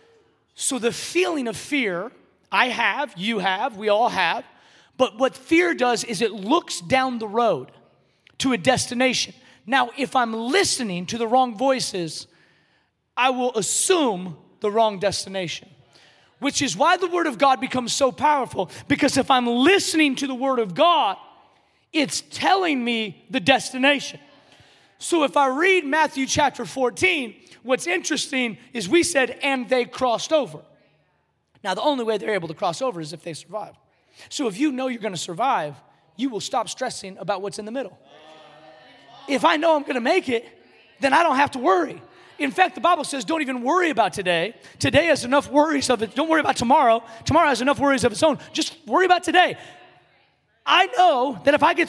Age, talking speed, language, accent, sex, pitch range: 30-49, 185 wpm, English, American, male, 225-305 Hz